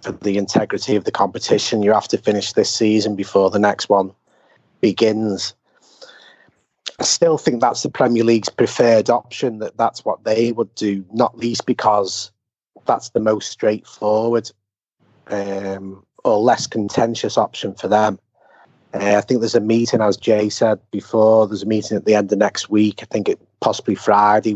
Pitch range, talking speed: 100-115 Hz, 170 wpm